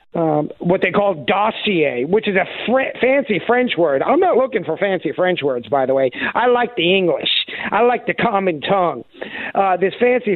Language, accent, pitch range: English, American, 145-225 Hz